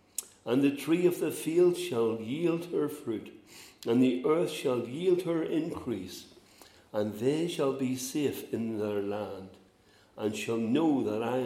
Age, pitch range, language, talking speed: 60-79, 100-135 Hz, English, 155 wpm